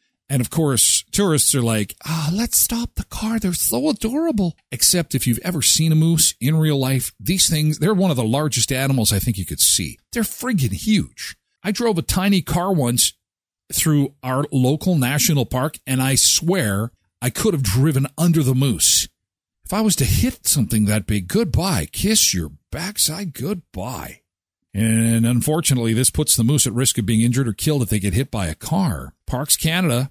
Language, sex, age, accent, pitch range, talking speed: English, male, 50-69, American, 120-180 Hz, 190 wpm